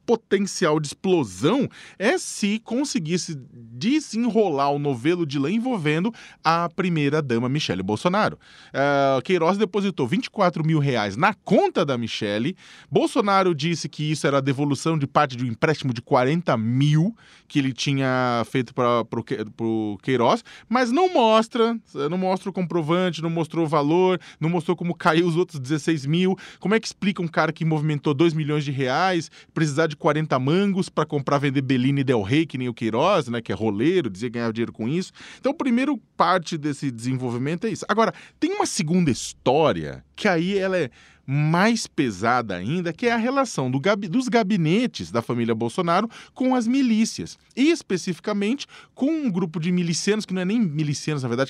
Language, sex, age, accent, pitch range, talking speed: Portuguese, male, 20-39, Brazilian, 140-210 Hz, 170 wpm